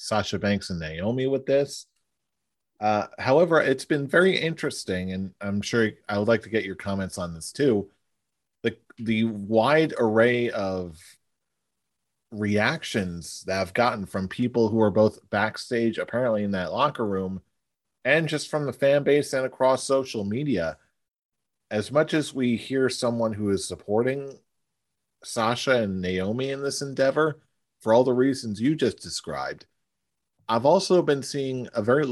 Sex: male